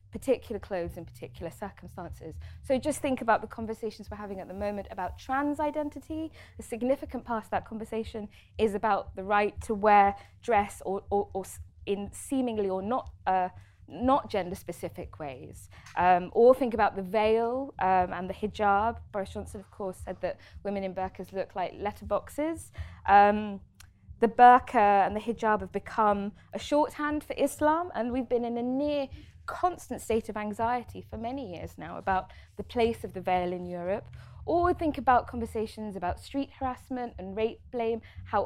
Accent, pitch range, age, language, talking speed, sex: British, 185-240 Hz, 20-39, English, 175 wpm, female